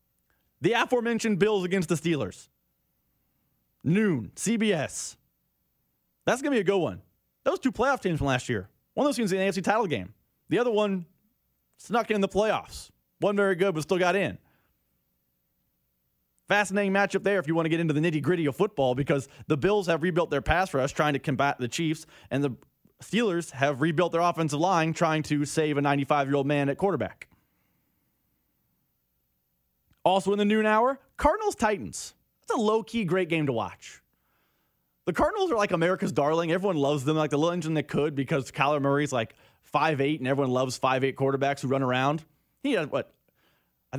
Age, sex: 30-49, male